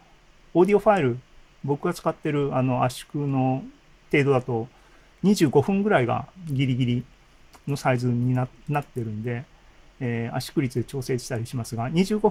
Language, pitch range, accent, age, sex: Japanese, 125-165 Hz, native, 40-59, male